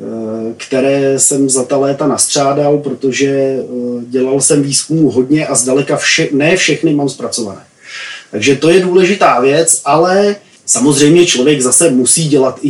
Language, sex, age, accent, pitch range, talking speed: Czech, male, 30-49, native, 125-160 Hz, 140 wpm